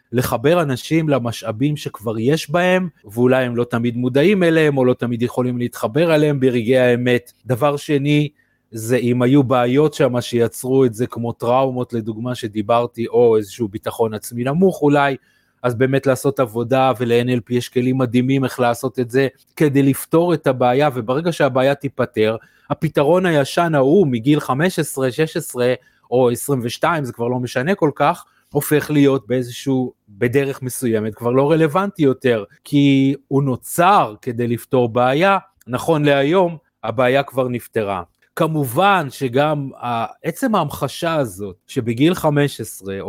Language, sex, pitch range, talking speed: Hebrew, male, 120-145 Hz, 140 wpm